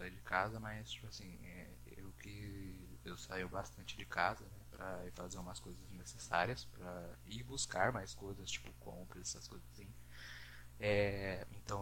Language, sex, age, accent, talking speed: Portuguese, male, 20-39, Brazilian, 145 wpm